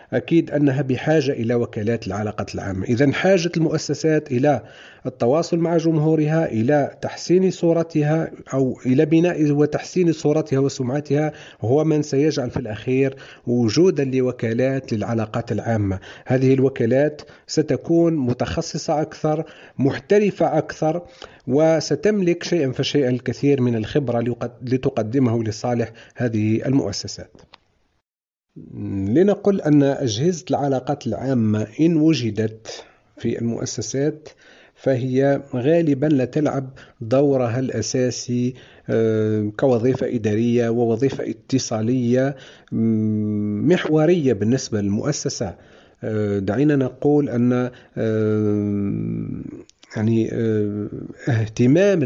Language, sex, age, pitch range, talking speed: Arabic, male, 40-59, 115-150 Hz, 90 wpm